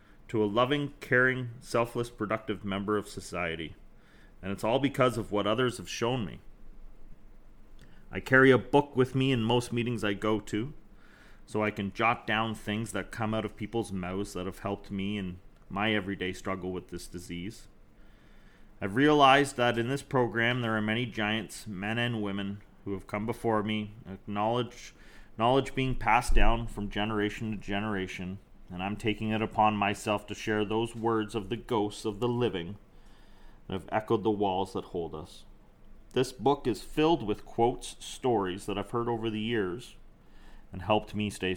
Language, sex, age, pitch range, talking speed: English, male, 30-49, 100-120 Hz, 175 wpm